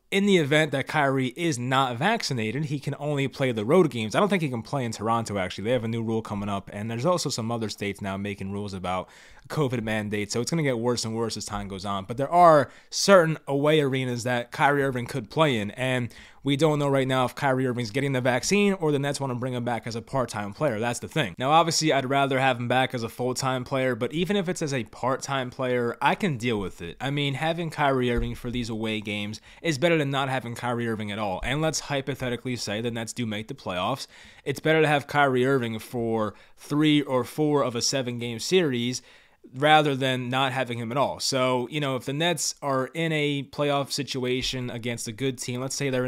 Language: English